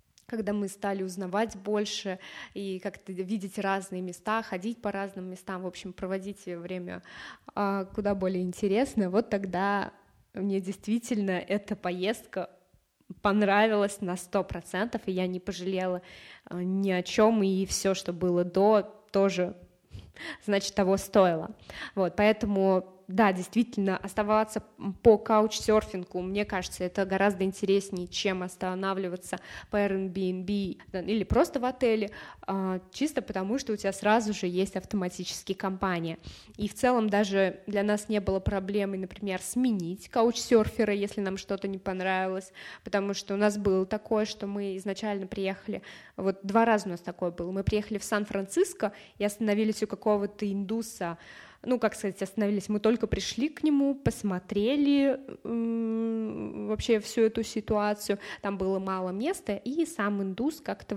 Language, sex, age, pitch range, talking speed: Russian, female, 20-39, 190-215 Hz, 140 wpm